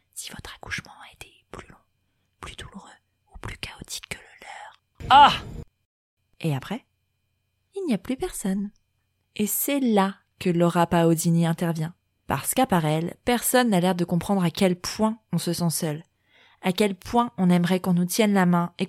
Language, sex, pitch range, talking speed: French, female, 170-205 Hz, 180 wpm